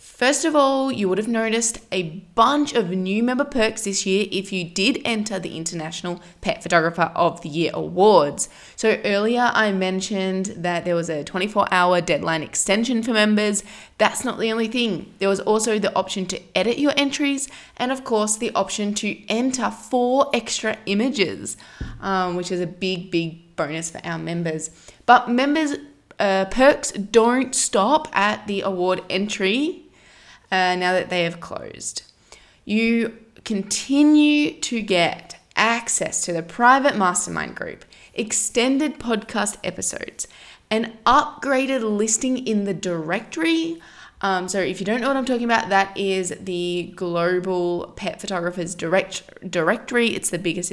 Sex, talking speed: female, 155 wpm